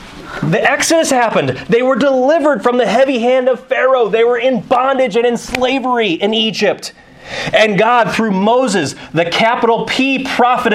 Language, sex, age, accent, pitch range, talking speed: English, male, 30-49, American, 170-235 Hz, 160 wpm